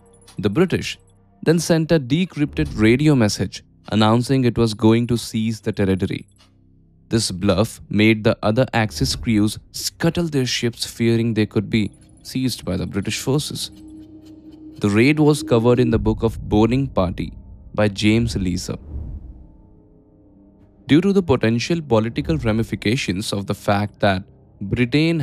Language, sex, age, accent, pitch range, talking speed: Hindi, male, 10-29, native, 100-130 Hz, 140 wpm